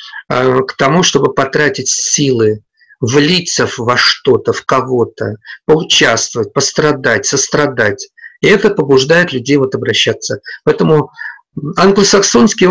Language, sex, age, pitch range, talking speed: Russian, male, 50-69, 125-180 Hz, 100 wpm